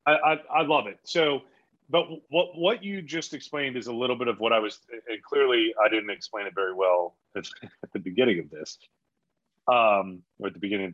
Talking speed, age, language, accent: 215 wpm, 30-49, English, American